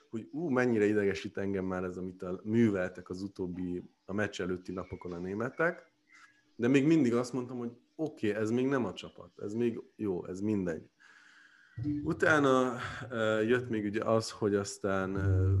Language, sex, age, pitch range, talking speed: Hungarian, male, 30-49, 95-120 Hz, 170 wpm